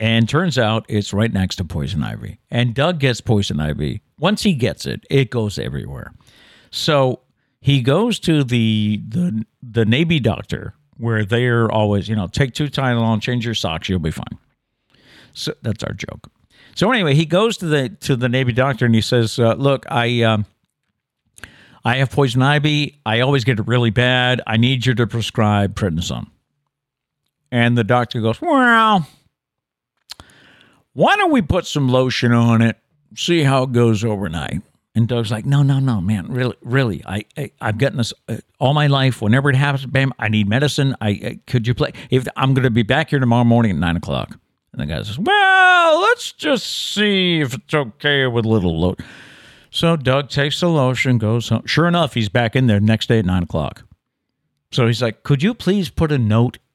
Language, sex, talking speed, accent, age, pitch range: English, male, 195 wpm, American, 60-79, 110-140 Hz